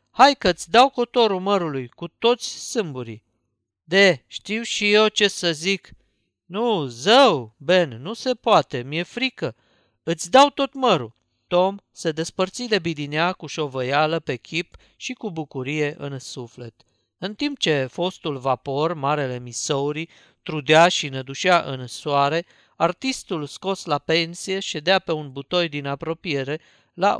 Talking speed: 140 wpm